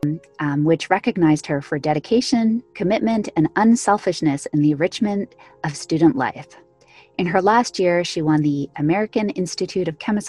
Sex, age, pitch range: female, 30-49, 155-200 Hz